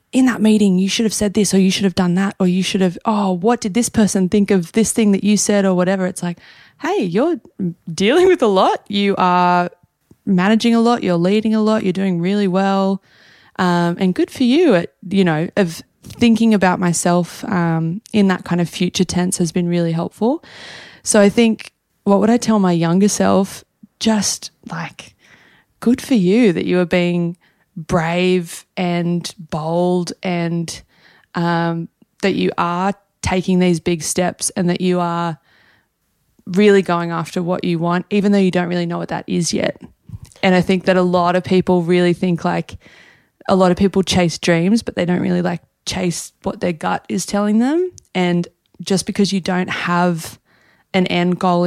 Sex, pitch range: female, 175-200 Hz